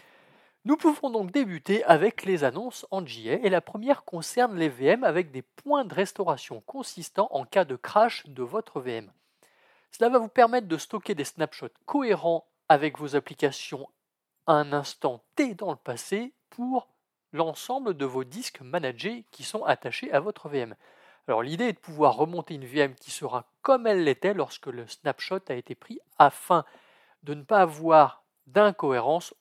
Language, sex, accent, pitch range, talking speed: French, male, French, 145-220 Hz, 170 wpm